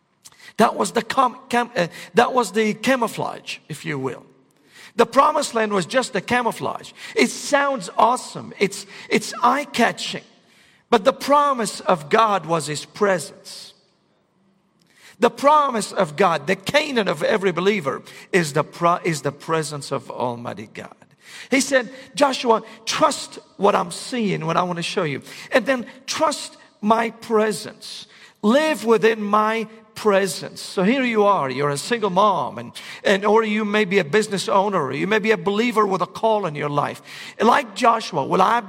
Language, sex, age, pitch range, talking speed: English, male, 50-69, 185-245 Hz, 165 wpm